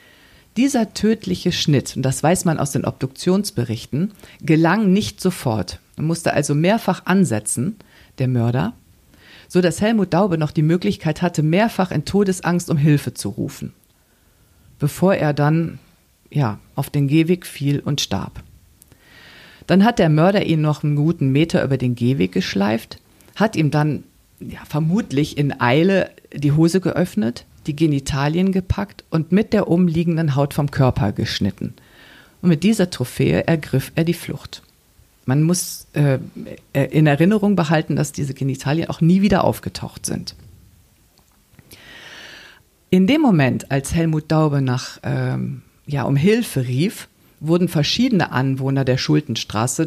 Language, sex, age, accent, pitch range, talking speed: German, female, 50-69, German, 125-175 Hz, 140 wpm